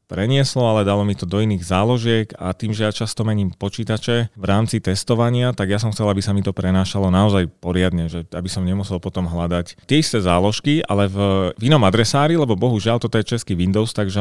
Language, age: Slovak, 30-49